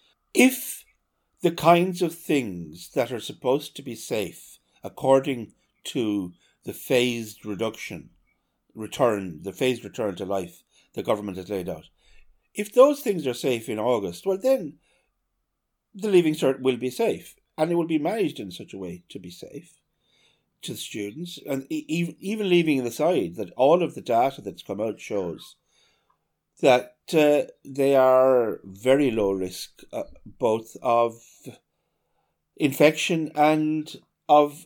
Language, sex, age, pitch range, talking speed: English, male, 60-79, 100-155 Hz, 145 wpm